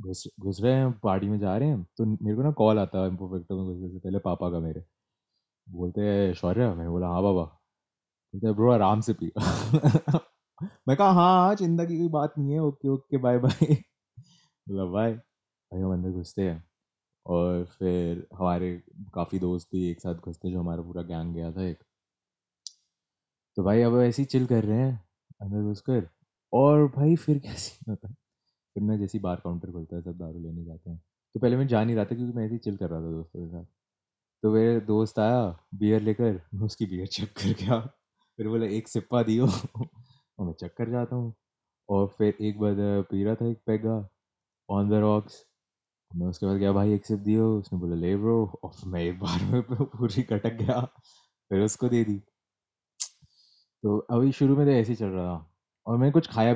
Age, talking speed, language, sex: 20-39, 195 wpm, Hindi, male